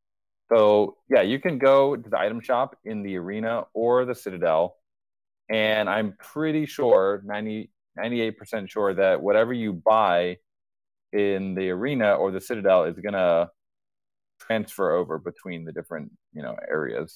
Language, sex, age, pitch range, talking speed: English, male, 30-49, 95-120 Hz, 150 wpm